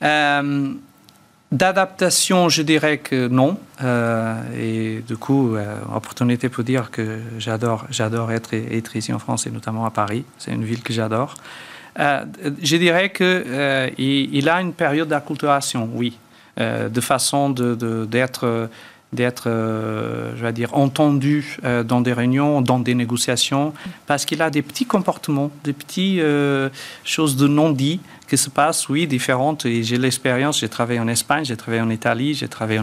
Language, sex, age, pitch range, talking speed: French, male, 40-59, 120-145 Hz, 170 wpm